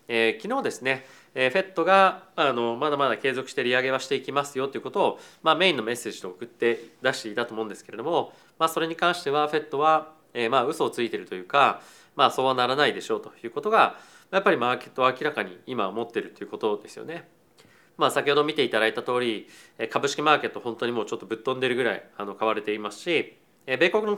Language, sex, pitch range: Japanese, male, 115-165 Hz